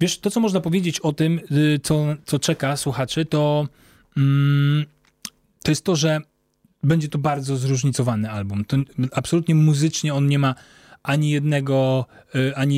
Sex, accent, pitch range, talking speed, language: male, native, 125-150 Hz, 135 wpm, Polish